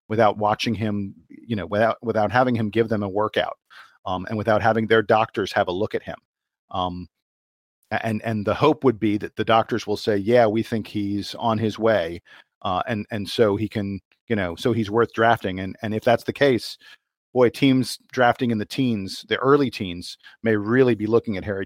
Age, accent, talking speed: 40-59, American, 210 wpm